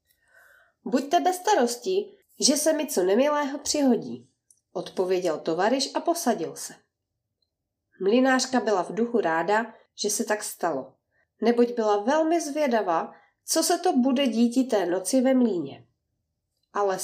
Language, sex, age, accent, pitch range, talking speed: Czech, female, 30-49, native, 205-265 Hz, 130 wpm